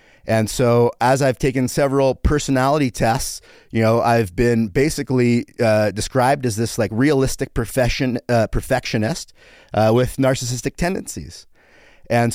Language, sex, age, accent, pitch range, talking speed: English, male, 30-49, American, 115-135 Hz, 130 wpm